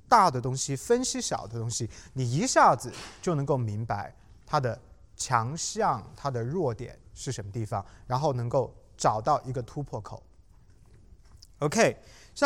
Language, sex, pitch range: Chinese, male, 110-170 Hz